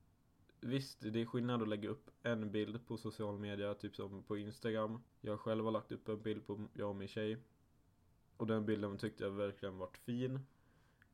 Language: Swedish